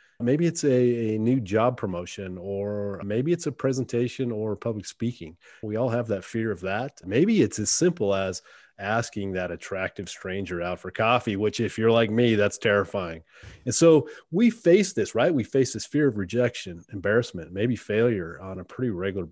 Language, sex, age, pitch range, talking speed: English, male, 30-49, 100-125 Hz, 185 wpm